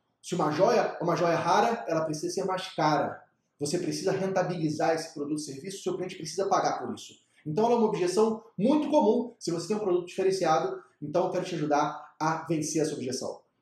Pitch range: 165-230 Hz